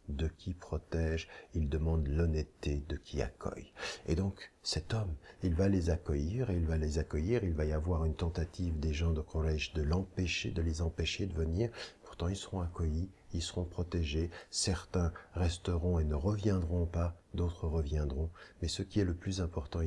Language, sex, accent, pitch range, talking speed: French, male, French, 70-85 Hz, 180 wpm